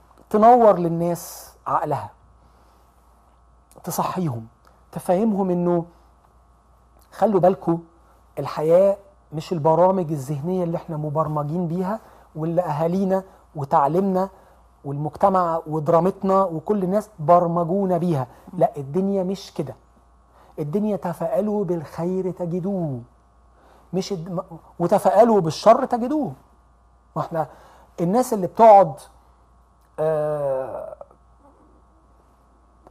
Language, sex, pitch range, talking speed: Arabic, male, 165-205 Hz, 80 wpm